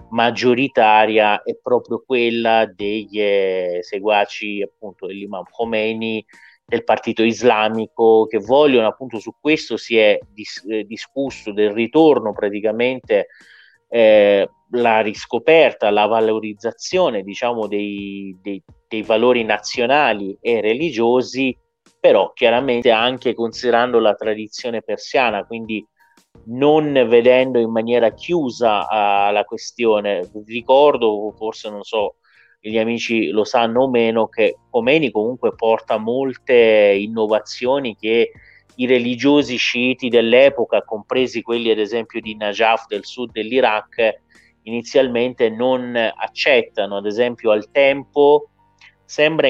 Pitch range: 105-125 Hz